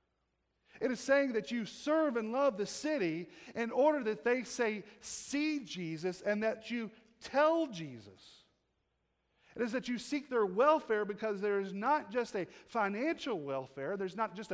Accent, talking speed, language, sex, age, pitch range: American, 165 wpm, English, male, 40-59, 160-230 Hz